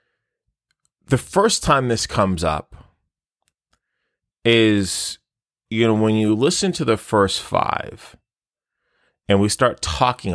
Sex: male